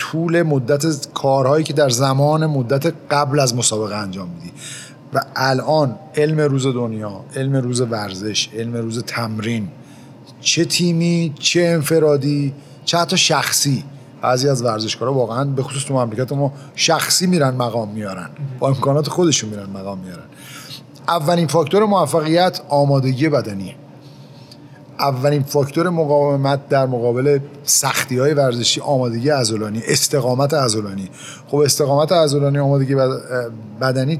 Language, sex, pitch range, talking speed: Persian, male, 120-150 Hz, 125 wpm